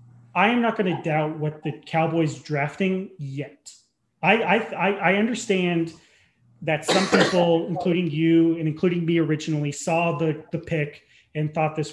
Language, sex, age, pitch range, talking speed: English, male, 30-49, 145-175 Hz, 155 wpm